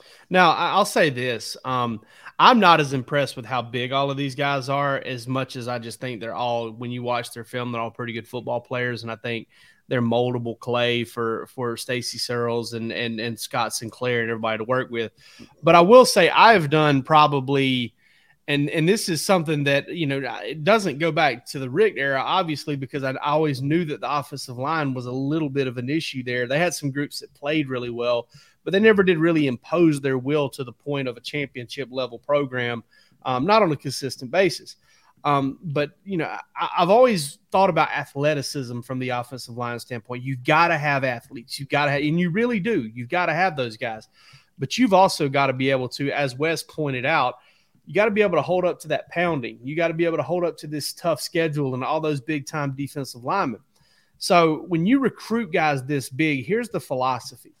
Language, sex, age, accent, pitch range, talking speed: English, male, 30-49, American, 125-160 Hz, 220 wpm